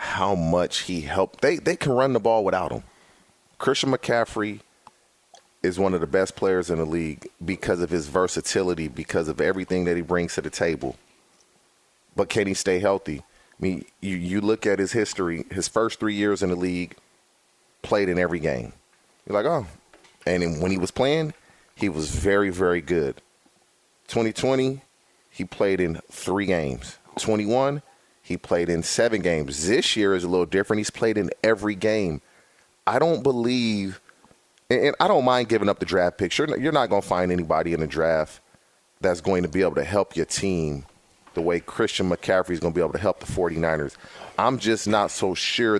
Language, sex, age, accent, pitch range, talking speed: English, male, 30-49, American, 90-110 Hz, 195 wpm